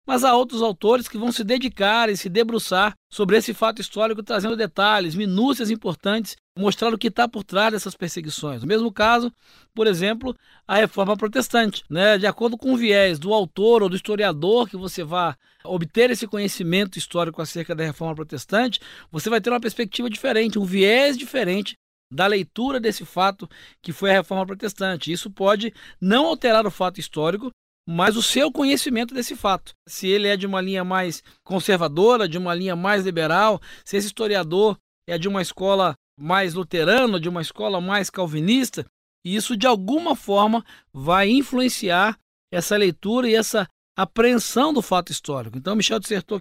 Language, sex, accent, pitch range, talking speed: Portuguese, male, Brazilian, 180-225 Hz, 170 wpm